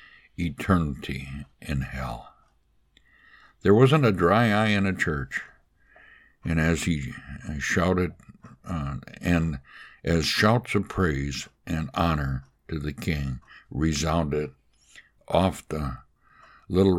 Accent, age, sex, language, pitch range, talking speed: American, 60-79, male, English, 70-85 Hz, 105 wpm